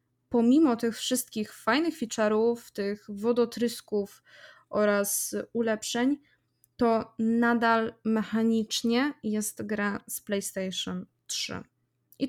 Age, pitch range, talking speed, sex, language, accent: 20-39, 215-245 Hz, 90 wpm, female, Polish, native